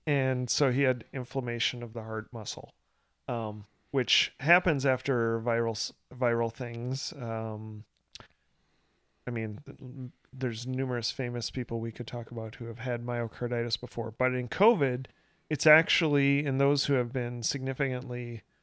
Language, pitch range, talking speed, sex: English, 120-140 Hz, 140 wpm, male